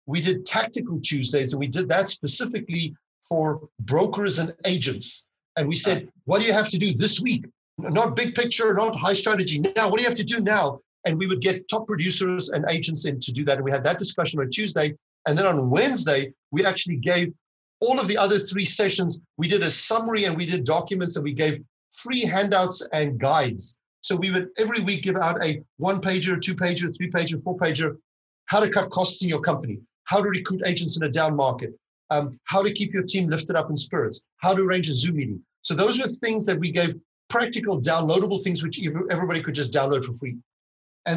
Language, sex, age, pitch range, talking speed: English, male, 50-69, 155-200 Hz, 215 wpm